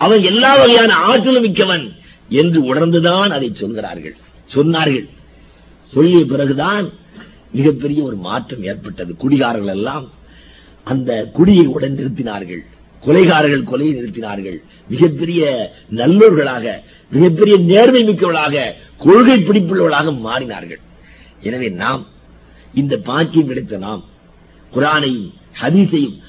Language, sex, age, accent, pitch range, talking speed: Tamil, male, 50-69, native, 130-190 Hz, 95 wpm